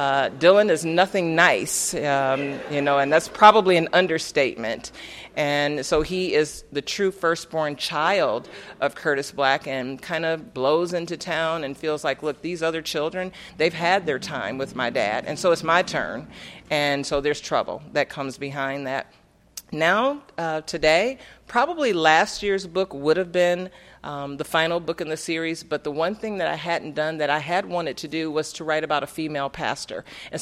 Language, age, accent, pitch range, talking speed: English, 40-59, American, 145-175 Hz, 190 wpm